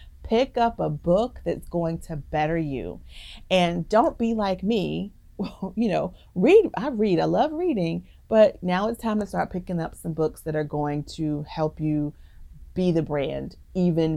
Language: English